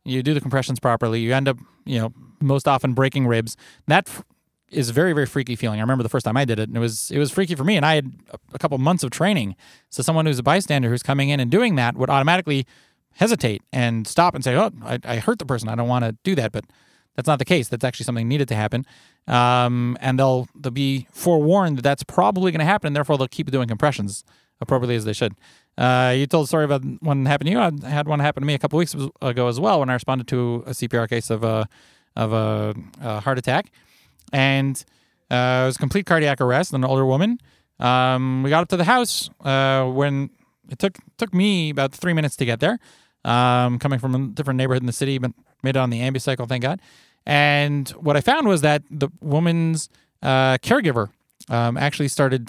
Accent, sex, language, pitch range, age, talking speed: American, male, English, 125-150 Hz, 30-49, 230 wpm